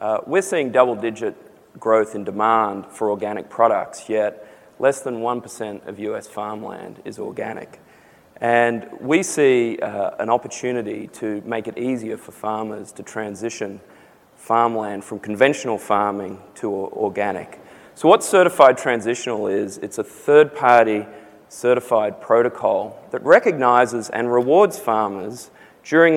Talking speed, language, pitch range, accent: 125 wpm, English, 110-130 Hz, Australian